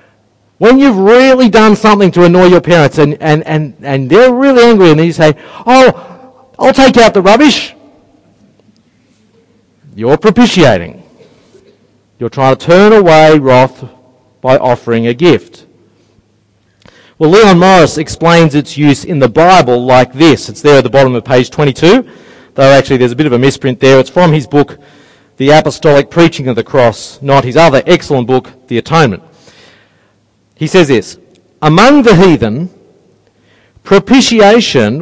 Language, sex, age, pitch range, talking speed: English, male, 40-59, 135-195 Hz, 155 wpm